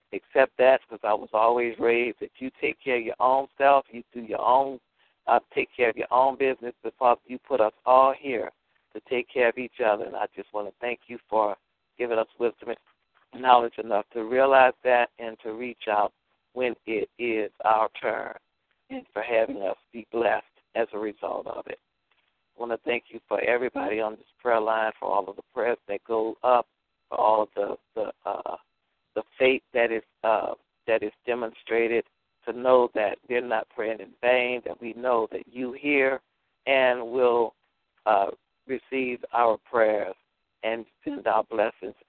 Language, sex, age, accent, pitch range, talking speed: English, male, 60-79, American, 110-125 Hz, 190 wpm